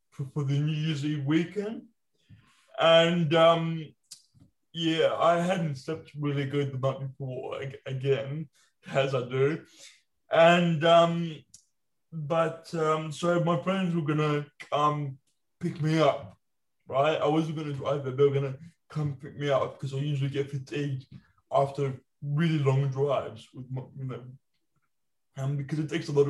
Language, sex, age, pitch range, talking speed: English, male, 20-39, 135-155 Hz, 155 wpm